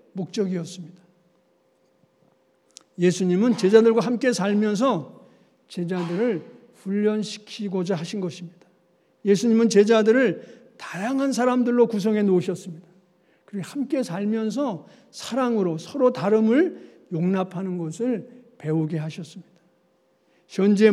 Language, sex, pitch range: Korean, male, 180-230 Hz